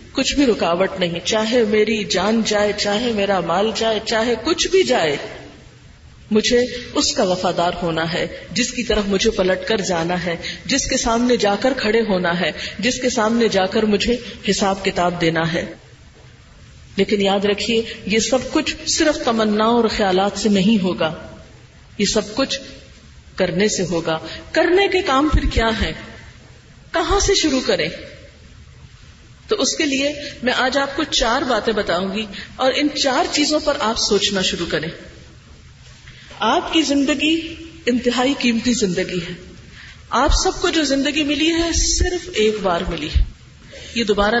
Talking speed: 160 wpm